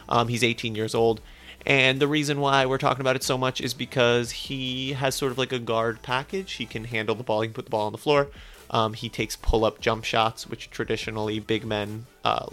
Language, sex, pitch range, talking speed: English, male, 110-140 Hz, 235 wpm